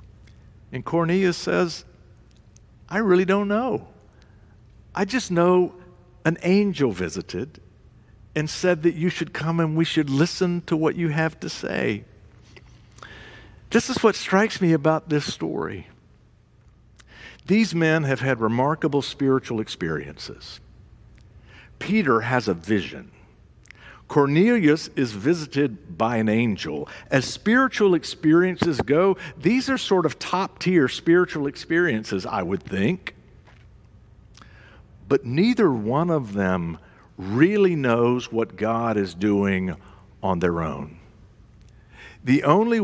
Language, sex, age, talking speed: English, male, 60-79, 120 wpm